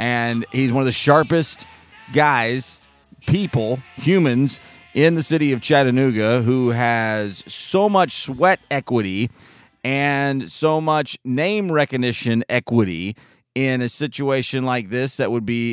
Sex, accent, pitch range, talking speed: male, American, 115-150 Hz, 130 wpm